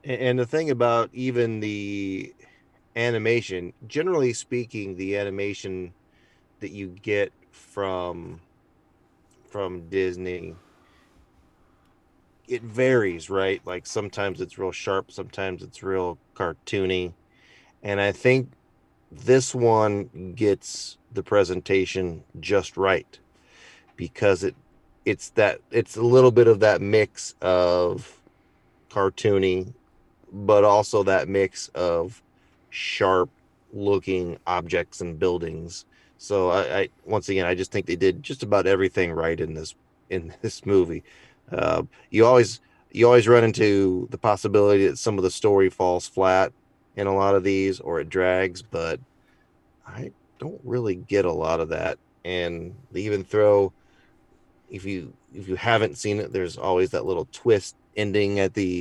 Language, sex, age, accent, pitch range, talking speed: English, male, 30-49, American, 90-110 Hz, 135 wpm